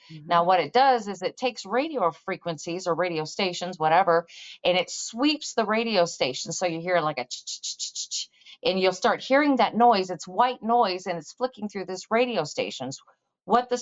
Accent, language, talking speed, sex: American, English, 180 wpm, female